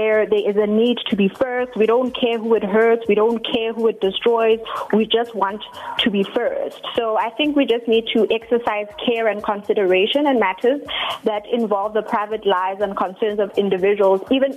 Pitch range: 205-235 Hz